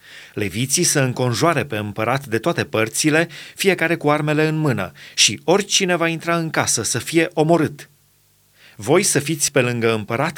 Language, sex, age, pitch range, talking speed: Romanian, male, 30-49, 125-165 Hz, 160 wpm